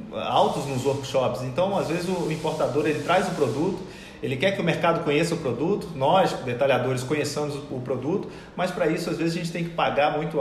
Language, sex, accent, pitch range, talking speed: Portuguese, male, Brazilian, 140-165 Hz, 210 wpm